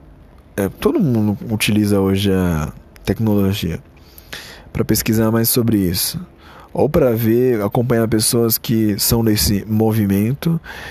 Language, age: Portuguese, 20-39